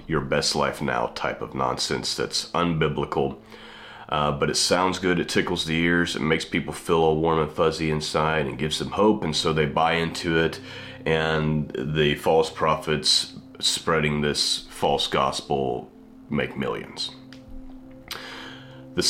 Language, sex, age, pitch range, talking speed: English, male, 30-49, 75-85 Hz, 150 wpm